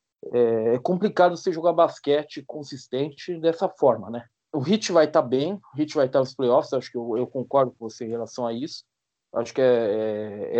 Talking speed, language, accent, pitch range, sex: 210 wpm, Portuguese, Brazilian, 120-160 Hz, male